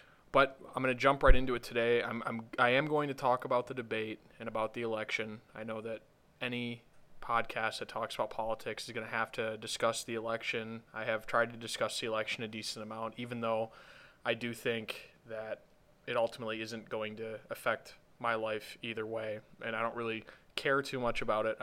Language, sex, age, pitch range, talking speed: English, male, 20-39, 110-115 Hz, 210 wpm